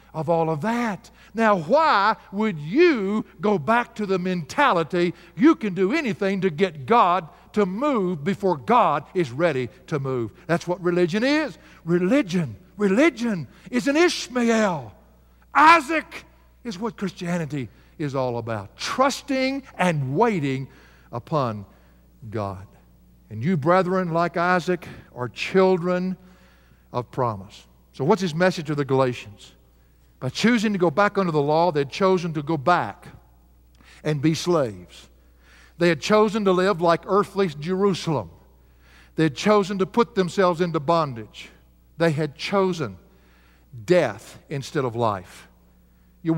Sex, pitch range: male, 120-195 Hz